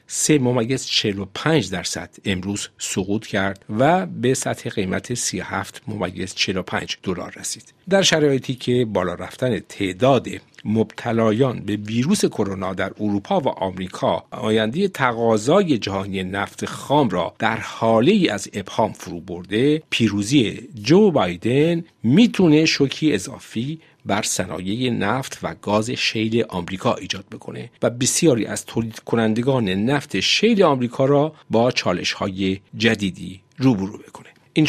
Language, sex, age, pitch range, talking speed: Persian, male, 50-69, 100-135 Hz, 125 wpm